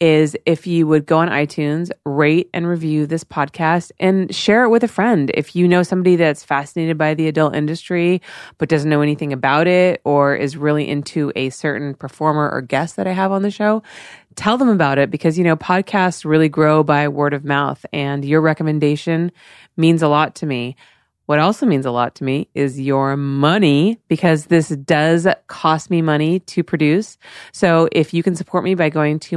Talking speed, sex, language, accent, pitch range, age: 200 wpm, female, English, American, 150-185 Hz, 30-49